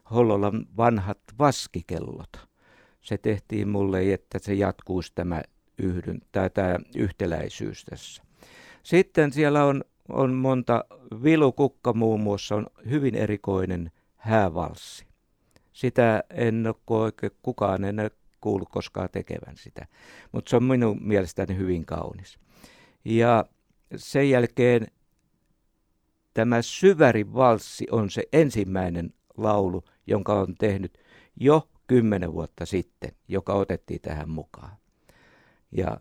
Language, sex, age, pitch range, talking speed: Finnish, male, 60-79, 95-115 Hz, 105 wpm